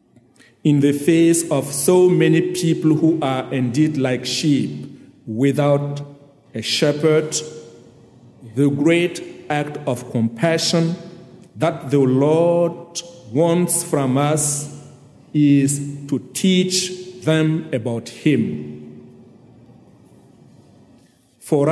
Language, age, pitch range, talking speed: English, 50-69, 130-160 Hz, 90 wpm